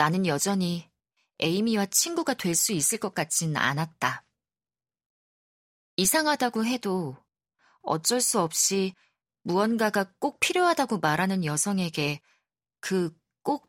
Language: Korean